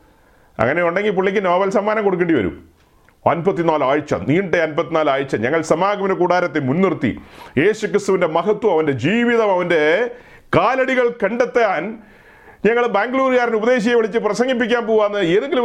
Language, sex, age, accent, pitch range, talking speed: Malayalam, male, 40-59, native, 150-235 Hz, 110 wpm